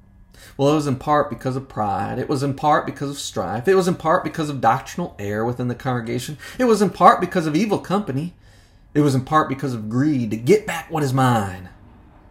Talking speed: 230 wpm